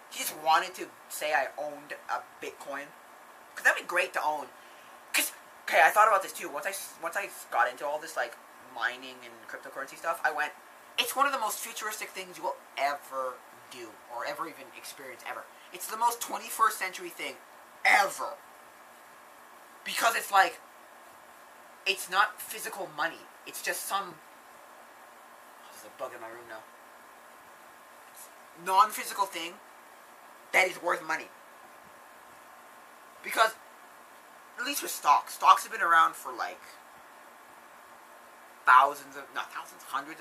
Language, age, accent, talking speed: English, 20-39, American, 150 wpm